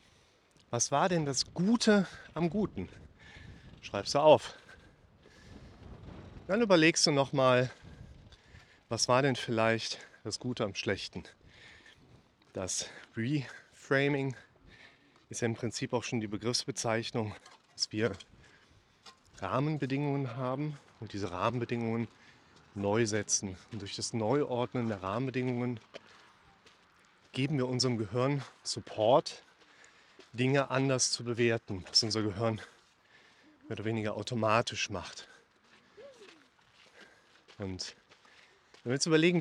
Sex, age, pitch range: male, 30-49, 115-140 Hz